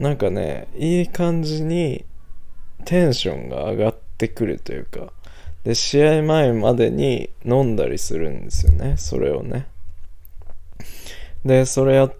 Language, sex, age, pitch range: Japanese, male, 20-39, 85-130 Hz